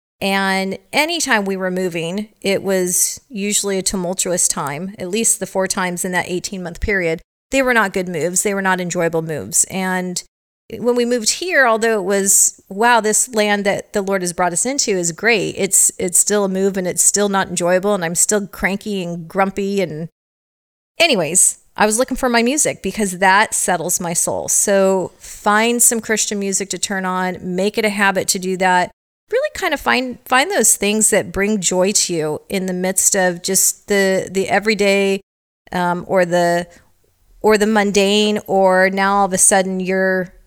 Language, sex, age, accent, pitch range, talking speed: English, female, 30-49, American, 185-215 Hz, 190 wpm